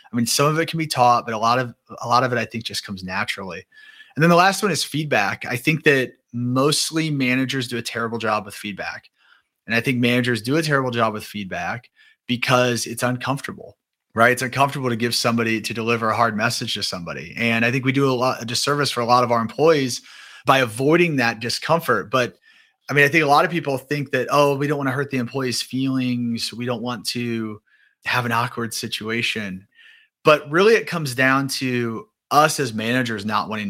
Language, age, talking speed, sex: English, 30-49, 220 wpm, male